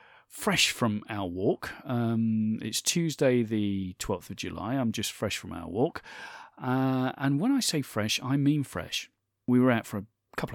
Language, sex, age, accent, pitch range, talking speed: English, male, 40-59, British, 100-145 Hz, 180 wpm